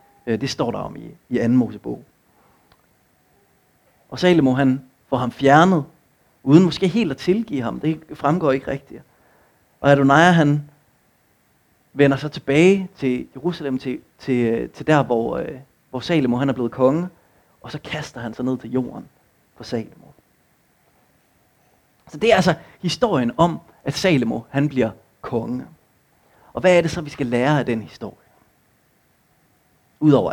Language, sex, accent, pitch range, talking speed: Danish, male, native, 130-180 Hz, 150 wpm